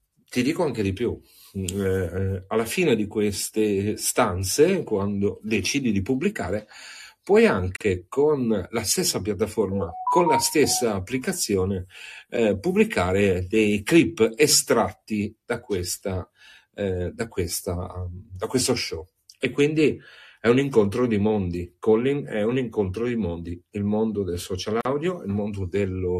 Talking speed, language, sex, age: 130 wpm, English, male, 40-59